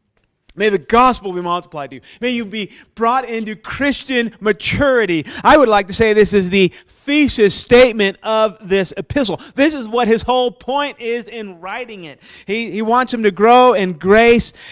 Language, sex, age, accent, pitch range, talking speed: English, male, 30-49, American, 150-235 Hz, 185 wpm